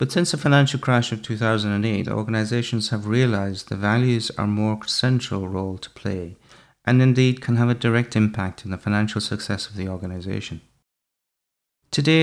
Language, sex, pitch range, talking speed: English, male, 105-125 Hz, 160 wpm